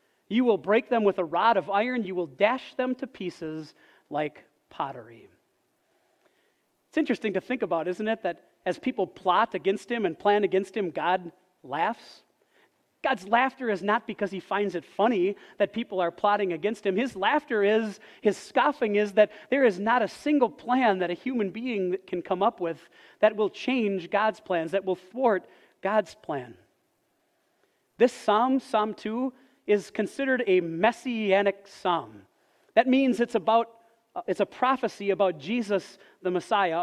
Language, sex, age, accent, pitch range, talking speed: English, male, 40-59, American, 195-250 Hz, 165 wpm